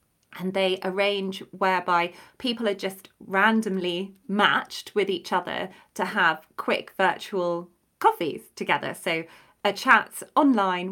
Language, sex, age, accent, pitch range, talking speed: English, female, 30-49, British, 190-260 Hz, 120 wpm